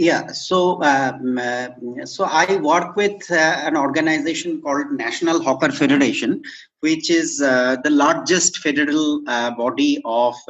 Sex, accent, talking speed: male, Indian, 135 wpm